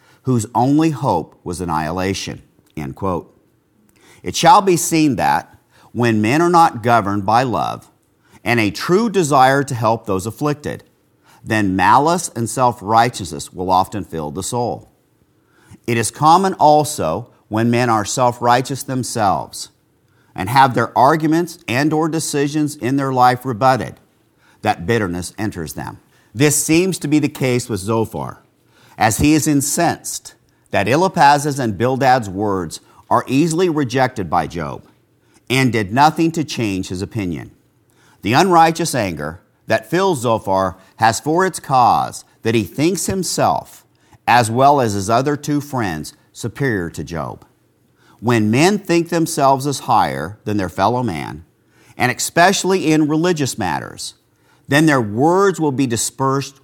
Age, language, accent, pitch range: 50-69, English, American, 105-150 Hz